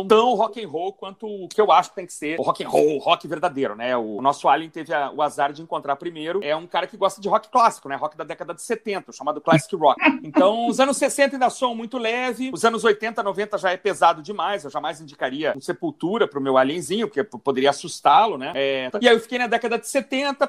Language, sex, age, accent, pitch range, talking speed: Portuguese, male, 40-59, Brazilian, 160-230 Hz, 245 wpm